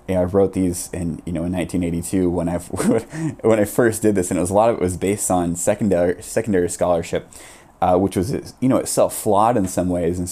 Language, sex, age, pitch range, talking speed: English, male, 20-39, 90-100 Hz, 240 wpm